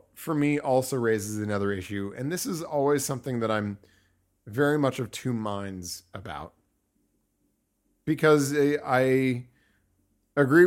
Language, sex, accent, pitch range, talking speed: English, male, American, 105-130 Hz, 125 wpm